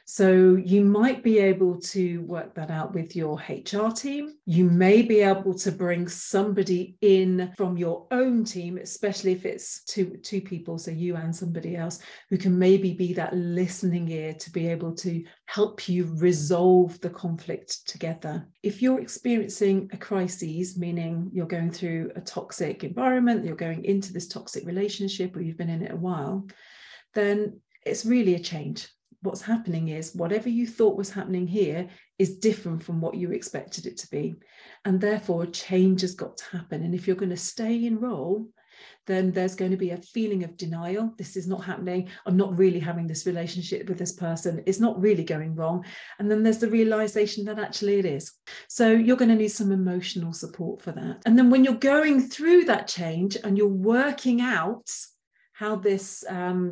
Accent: British